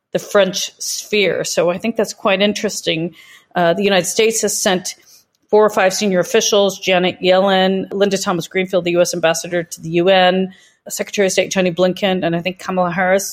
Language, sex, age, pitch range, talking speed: English, female, 40-59, 180-210 Hz, 180 wpm